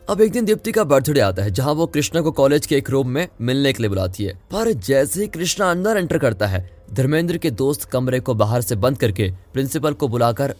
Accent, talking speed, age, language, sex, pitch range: native, 240 wpm, 20-39, Hindi, male, 115-155 Hz